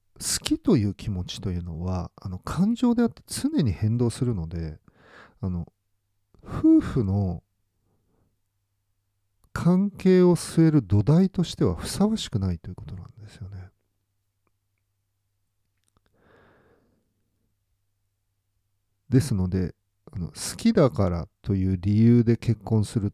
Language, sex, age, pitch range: Japanese, male, 40-59, 95-130 Hz